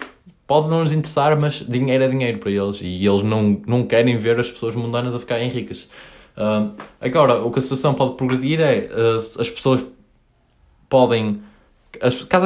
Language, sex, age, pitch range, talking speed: Portuguese, male, 20-39, 105-130 Hz, 180 wpm